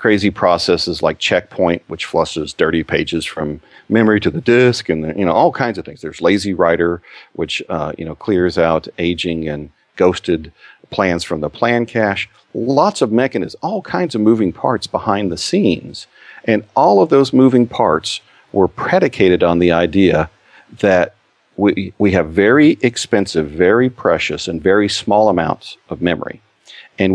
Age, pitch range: 40-59, 85-110 Hz